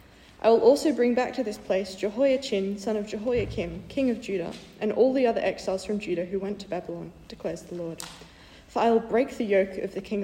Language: English